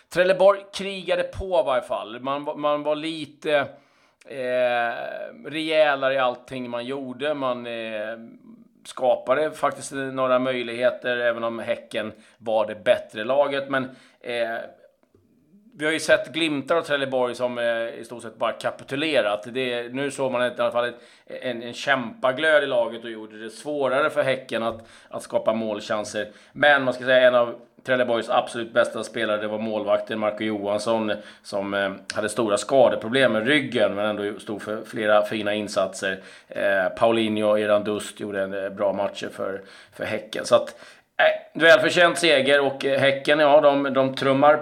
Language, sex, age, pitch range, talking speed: Swedish, male, 30-49, 110-145 Hz, 160 wpm